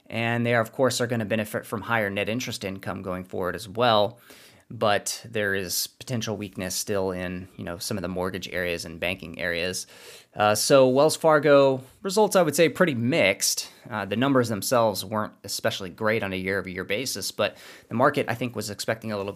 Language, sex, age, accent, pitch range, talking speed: English, male, 30-49, American, 95-125 Hz, 200 wpm